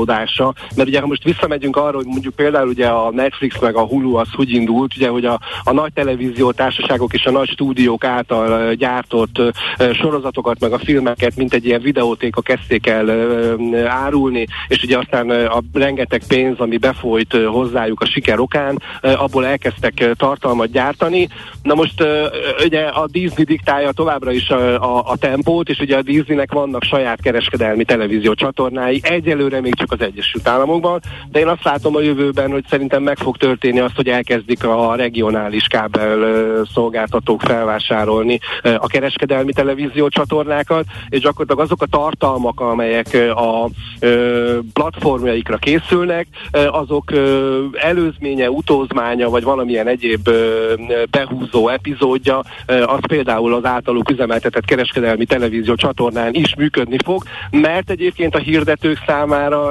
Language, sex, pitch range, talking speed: Hungarian, male, 120-145 Hz, 140 wpm